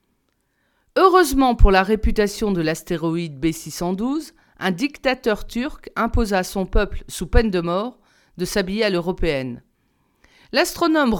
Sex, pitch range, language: female, 195-260 Hz, French